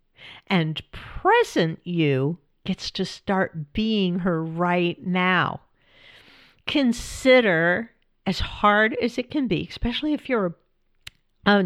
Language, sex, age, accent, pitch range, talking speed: English, female, 50-69, American, 175-220 Hz, 110 wpm